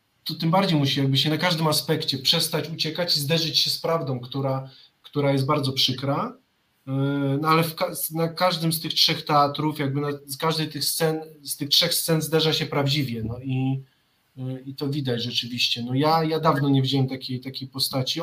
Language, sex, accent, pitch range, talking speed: Polish, male, native, 135-165 Hz, 190 wpm